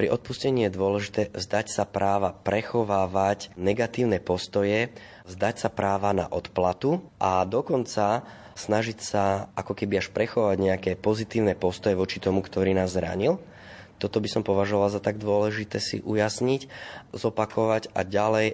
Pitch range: 95-110 Hz